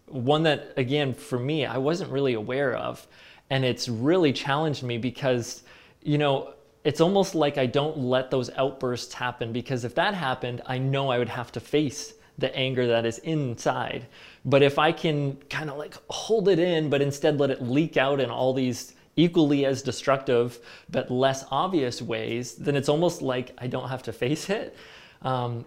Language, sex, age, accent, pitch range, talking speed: English, male, 20-39, American, 125-150 Hz, 185 wpm